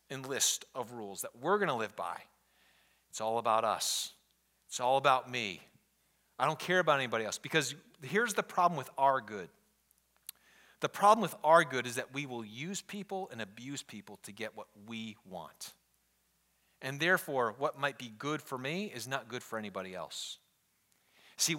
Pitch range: 130-160 Hz